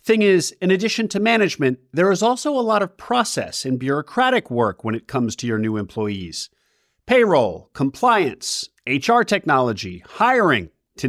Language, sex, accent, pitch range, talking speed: English, male, American, 130-195 Hz, 155 wpm